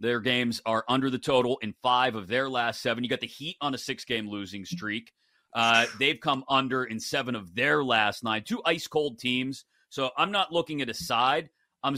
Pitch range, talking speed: 115-145 Hz, 220 wpm